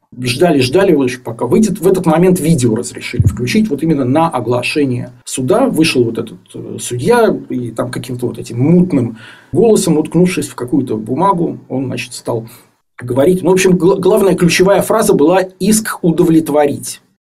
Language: Russian